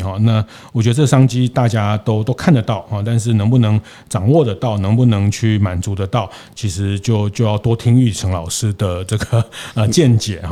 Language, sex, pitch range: Chinese, male, 105-130 Hz